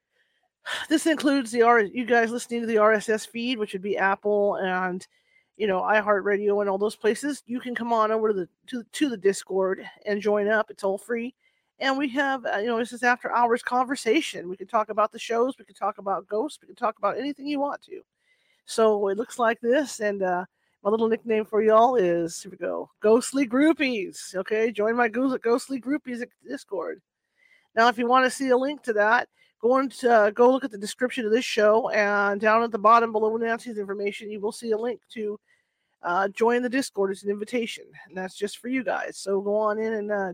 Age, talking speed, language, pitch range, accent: 40-59, 215 wpm, English, 205-255 Hz, American